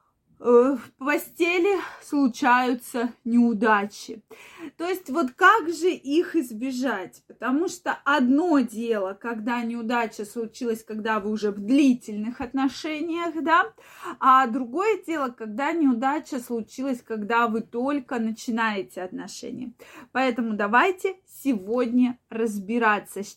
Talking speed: 105 wpm